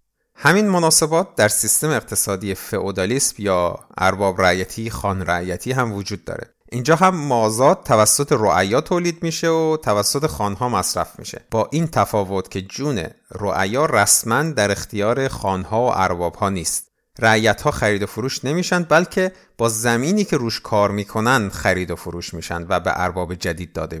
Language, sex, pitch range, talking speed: Persian, male, 95-125 Hz, 155 wpm